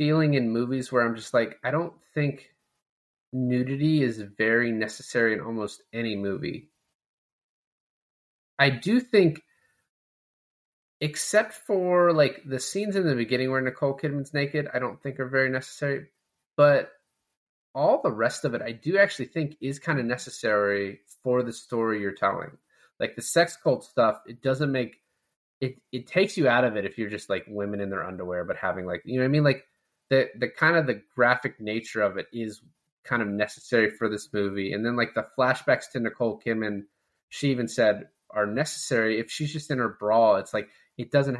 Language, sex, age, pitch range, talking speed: English, male, 20-39, 110-135 Hz, 185 wpm